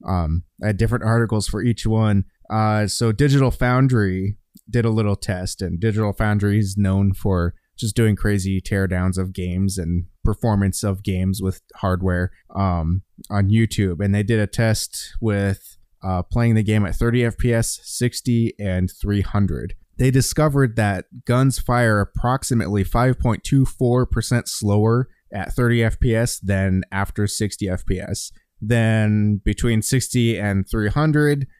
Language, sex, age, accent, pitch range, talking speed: English, male, 20-39, American, 95-120 Hz, 140 wpm